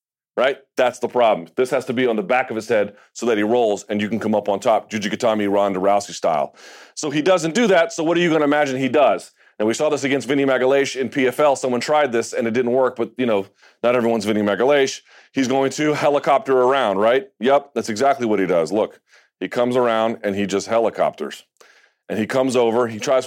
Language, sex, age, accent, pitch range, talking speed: English, male, 30-49, American, 115-145 Hz, 240 wpm